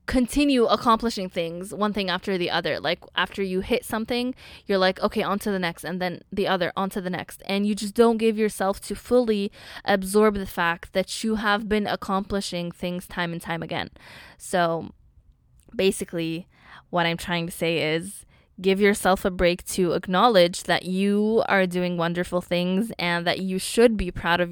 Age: 10-29